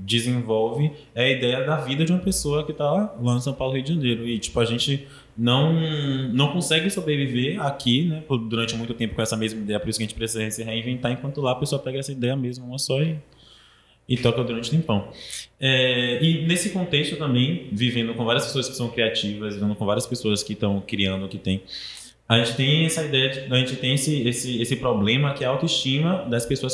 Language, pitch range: Portuguese, 110-140 Hz